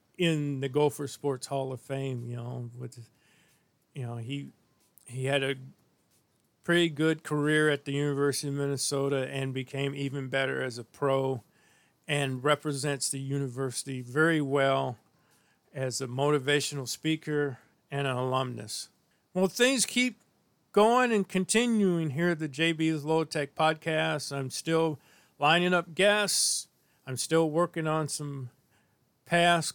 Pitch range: 135-160 Hz